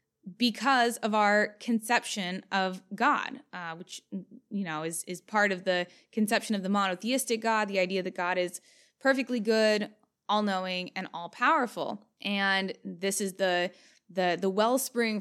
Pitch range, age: 185-225 Hz, 20-39